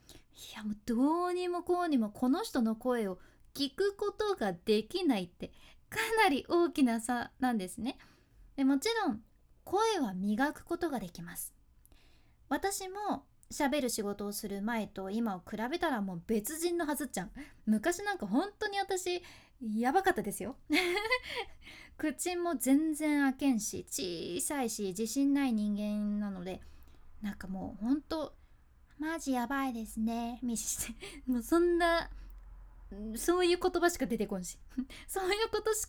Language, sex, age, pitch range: Japanese, female, 20-39, 220-340 Hz